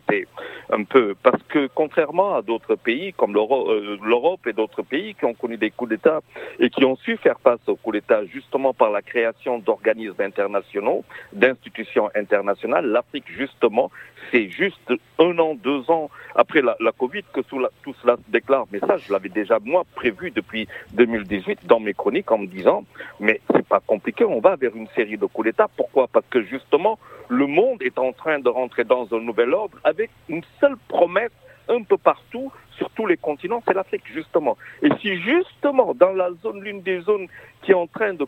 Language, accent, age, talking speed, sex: French, French, 60-79, 195 wpm, male